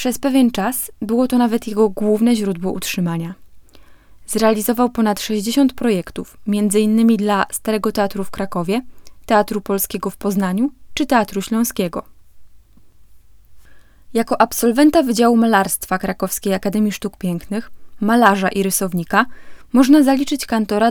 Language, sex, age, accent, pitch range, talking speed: Polish, female, 20-39, native, 195-235 Hz, 120 wpm